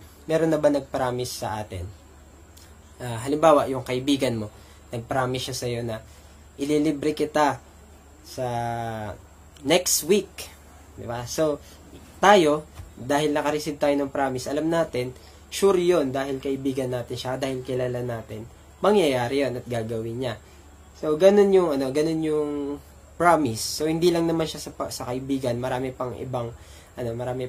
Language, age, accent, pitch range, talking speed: English, 20-39, Filipino, 105-145 Hz, 140 wpm